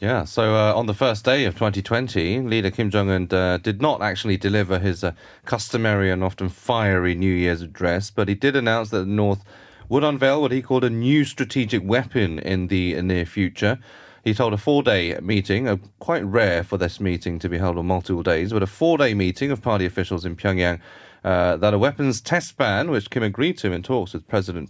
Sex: male